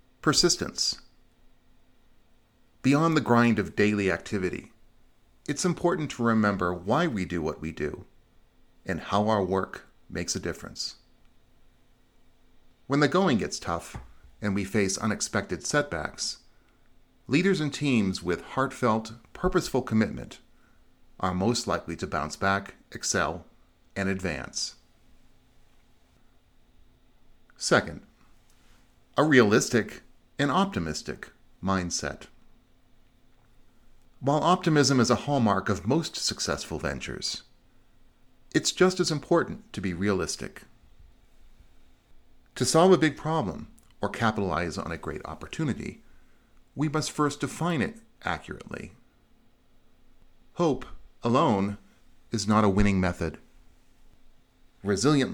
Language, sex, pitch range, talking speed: English, male, 95-140 Hz, 105 wpm